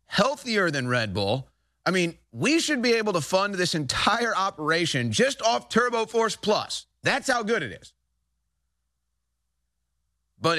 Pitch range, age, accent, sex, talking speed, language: 130-215 Hz, 30-49, American, male, 145 wpm, English